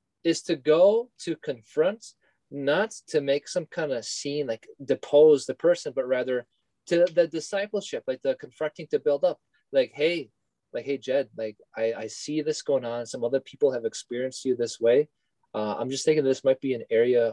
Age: 20-39